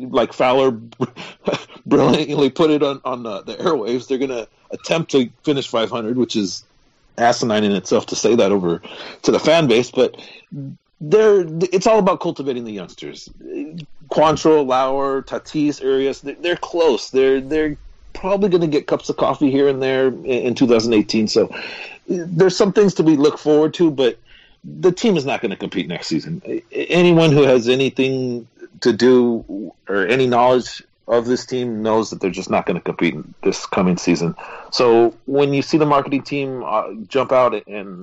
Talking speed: 180 wpm